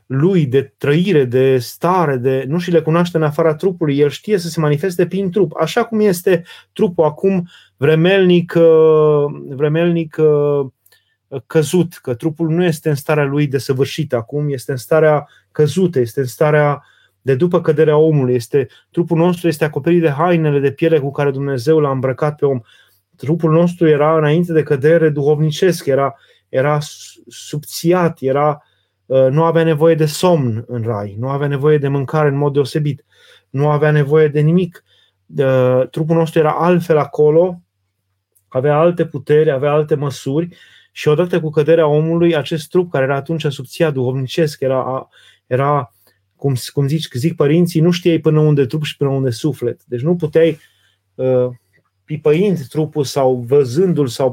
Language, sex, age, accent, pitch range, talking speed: Romanian, male, 30-49, native, 135-165 Hz, 155 wpm